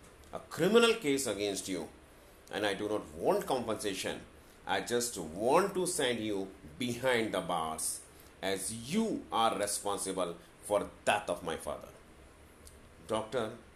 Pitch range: 80-130 Hz